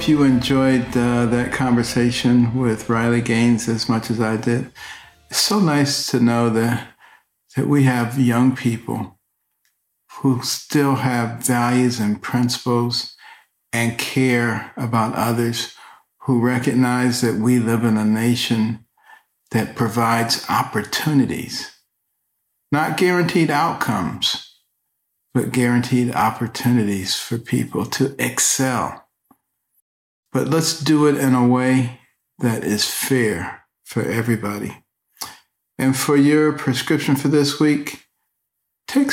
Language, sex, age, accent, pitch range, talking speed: English, male, 60-79, American, 115-135 Hz, 115 wpm